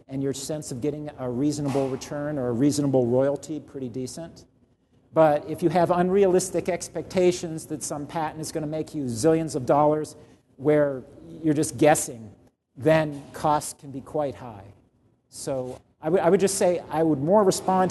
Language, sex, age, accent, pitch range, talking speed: English, male, 50-69, American, 125-155 Hz, 170 wpm